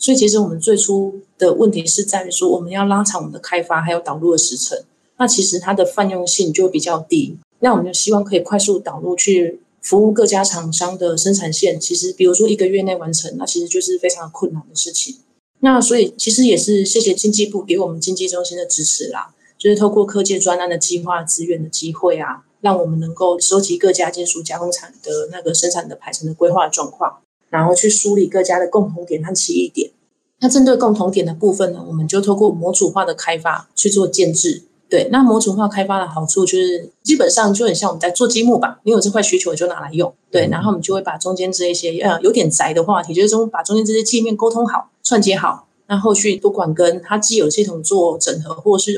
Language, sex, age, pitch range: Chinese, female, 20-39, 175-215 Hz